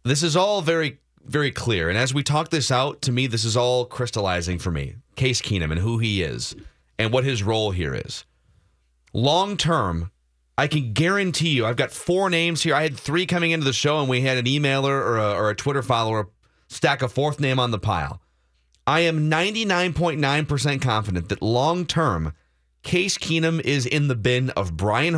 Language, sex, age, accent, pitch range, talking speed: English, male, 30-49, American, 110-155 Hz, 195 wpm